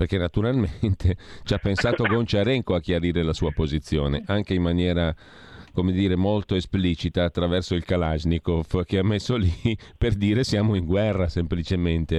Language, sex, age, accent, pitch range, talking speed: Italian, male, 40-59, native, 85-100 Hz, 155 wpm